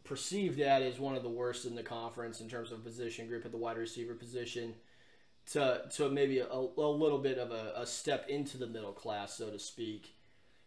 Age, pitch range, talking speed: 30-49, 120-145 Hz, 215 wpm